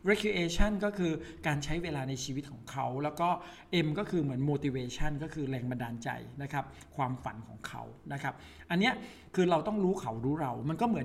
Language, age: Thai, 60-79